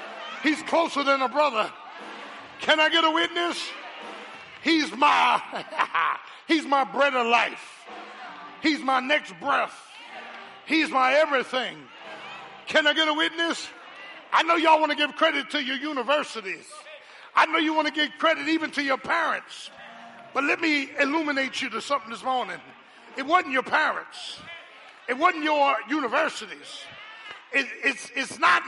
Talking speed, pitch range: 150 wpm, 285-365 Hz